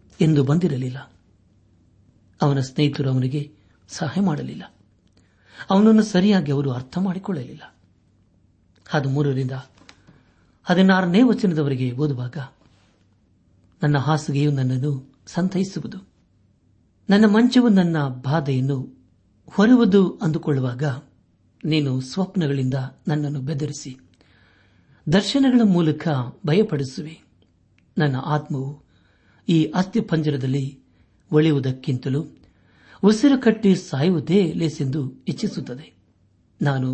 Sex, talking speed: male, 75 wpm